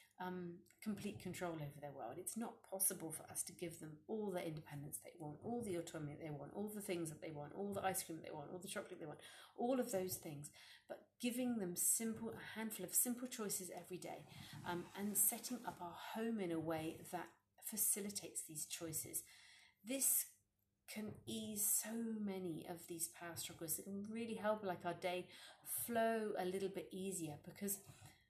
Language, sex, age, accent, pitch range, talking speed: English, female, 30-49, British, 160-205 Hz, 195 wpm